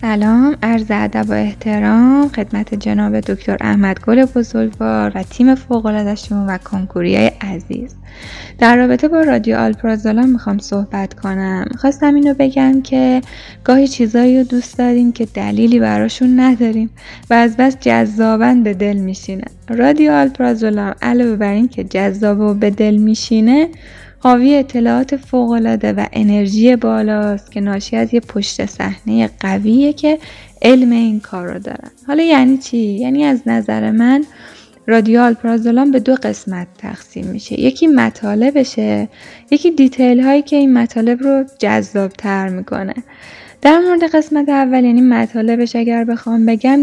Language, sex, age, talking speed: Persian, female, 10-29, 135 wpm